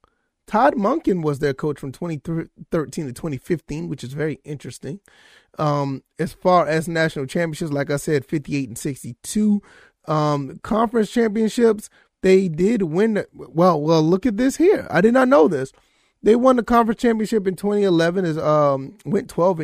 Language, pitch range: English, 140-195 Hz